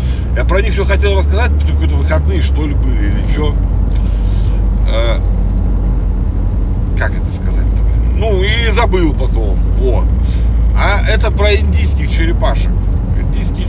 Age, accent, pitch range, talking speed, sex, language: 40-59, native, 80-90 Hz, 130 wpm, male, Russian